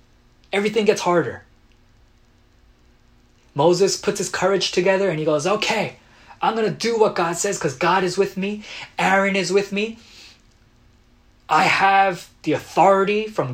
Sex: male